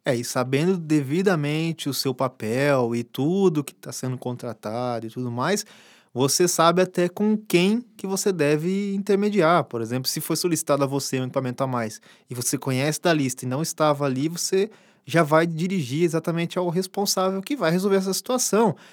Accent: Brazilian